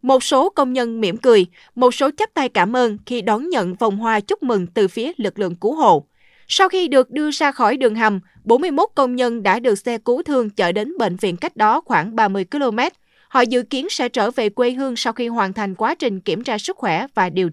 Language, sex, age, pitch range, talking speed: Vietnamese, female, 20-39, 215-290 Hz, 240 wpm